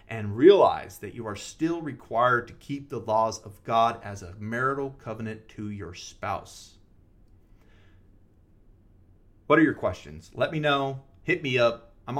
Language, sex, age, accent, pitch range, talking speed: English, male, 30-49, American, 105-140 Hz, 155 wpm